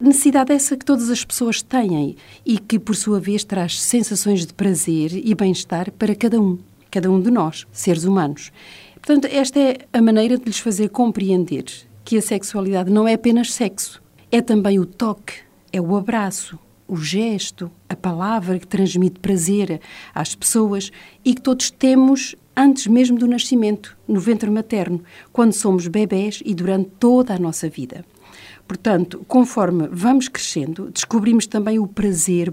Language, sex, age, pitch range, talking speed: Portuguese, female, 50-69, 175-225 Hz, 160 wpm